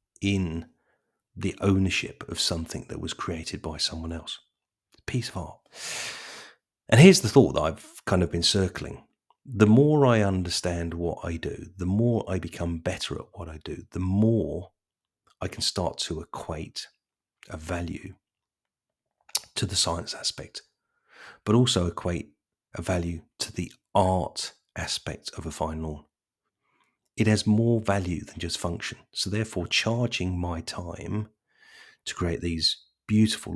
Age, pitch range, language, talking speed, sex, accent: 40-59, 85-110 Hz, English, 150 wpm, male, British